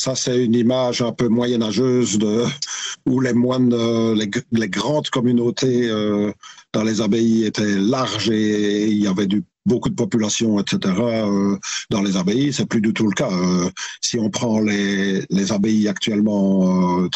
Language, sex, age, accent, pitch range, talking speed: French, male, 50-69, French, 100-150 Hz, 170 wpm